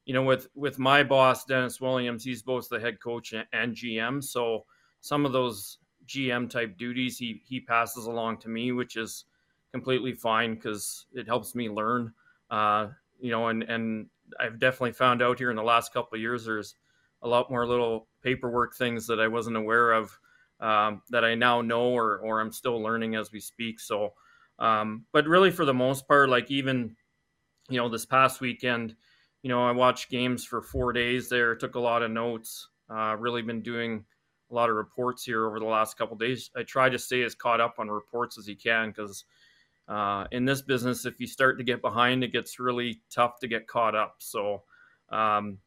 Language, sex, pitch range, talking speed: English, male, 115-130 Hz, 205 wpm